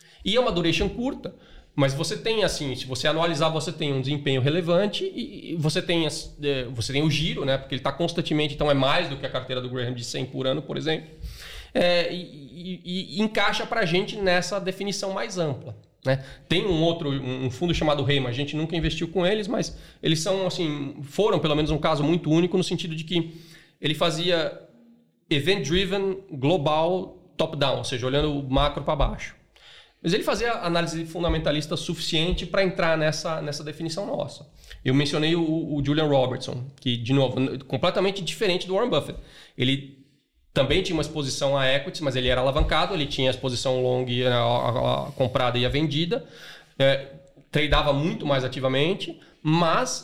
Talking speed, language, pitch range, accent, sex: 180 wpm, Portuguese, 135-175 Hz, Brazilian, male